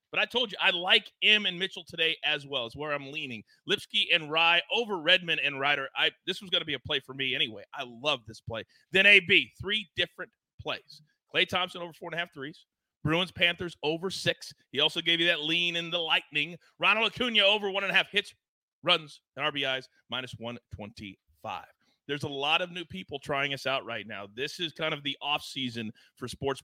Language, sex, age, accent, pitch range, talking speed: English, male, 30-49, American, 130-185 Hz, 215 wpm